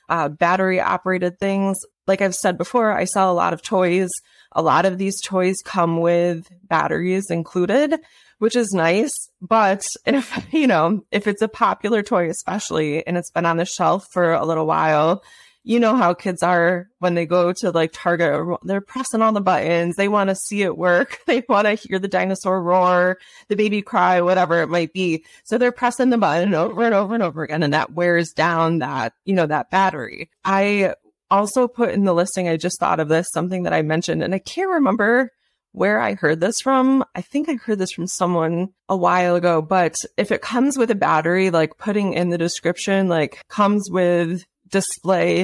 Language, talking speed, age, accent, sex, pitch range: English, 200 wpm, 20-39, American, female, 170-205 Hz